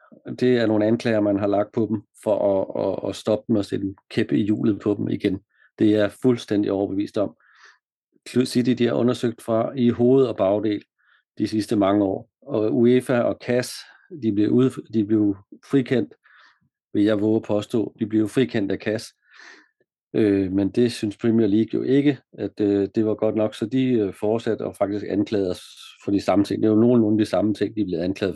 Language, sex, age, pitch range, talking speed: Danish, male, 40-59, 100-120 Hz, 205 wpm